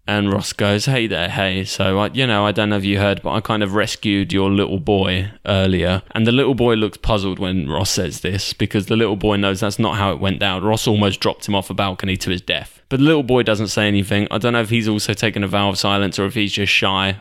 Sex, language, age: male, English, 20-39